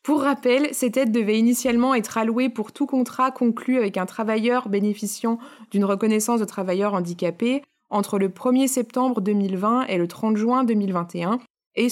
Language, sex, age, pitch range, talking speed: French, female, 20-39, 200-250 Hz, 160 wpm